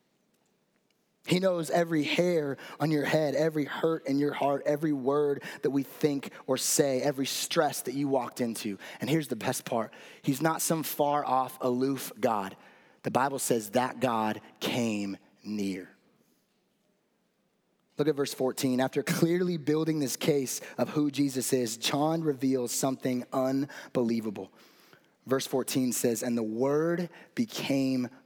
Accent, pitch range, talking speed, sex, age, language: American, 125-165 Hz, 145 wpm, male, 20-39, English